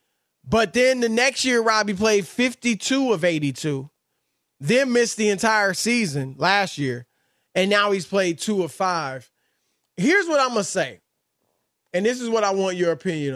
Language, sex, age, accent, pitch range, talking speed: English, male, 20-39, American, 165-235 Hz, 165 wpm